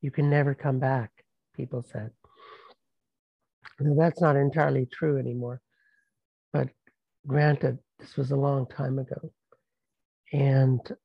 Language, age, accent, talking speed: English, 60-79, American, 120 wpm